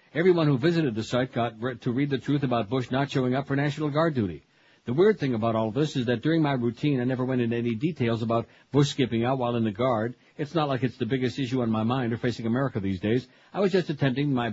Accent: American